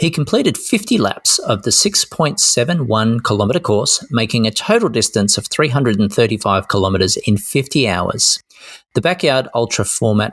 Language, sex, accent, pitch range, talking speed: English, male, Australian, 105-150 Hz, 135 wpm